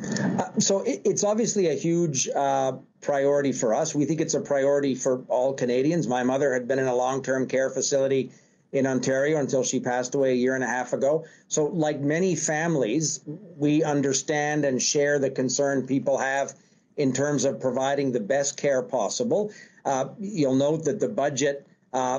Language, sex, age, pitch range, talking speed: English, male, 50-69, 140-160 Hz, 175 wpm